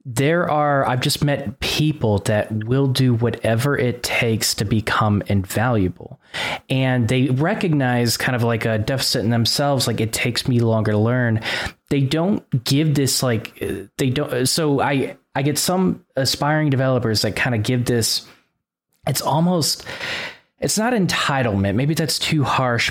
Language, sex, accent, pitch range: English, male, American, 115-140 Hz